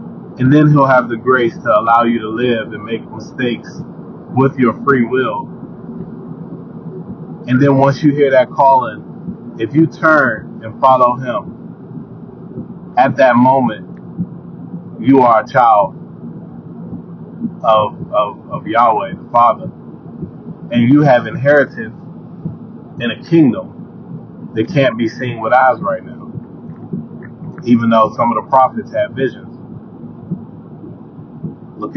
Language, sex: English, male